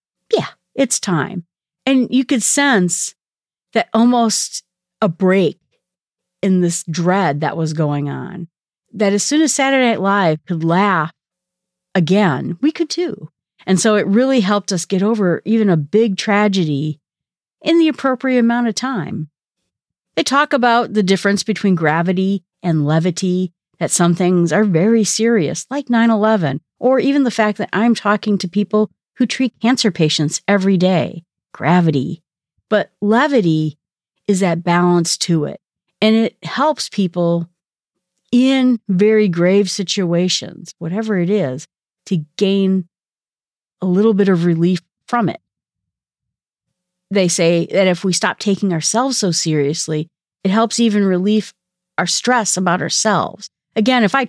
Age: 40-59